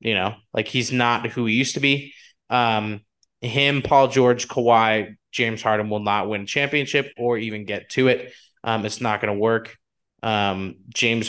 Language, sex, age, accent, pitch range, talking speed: English, male, 20-39, American, 110-130 Hz, 175 wpm